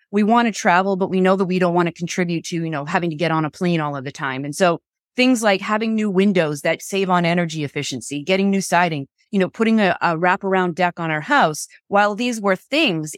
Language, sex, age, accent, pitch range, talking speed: English, female, 30-49, American, 165-205 Hz, 250 wpm